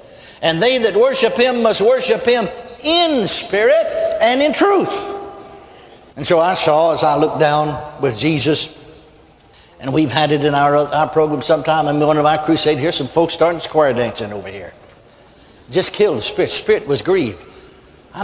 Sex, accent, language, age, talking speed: male, American, English, 60-79, 175 wpm